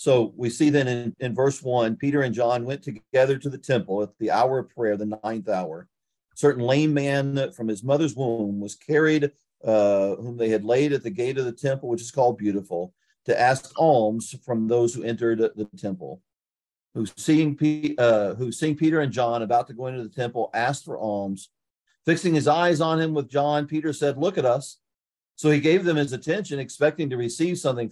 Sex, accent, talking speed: male, American, 205 wpm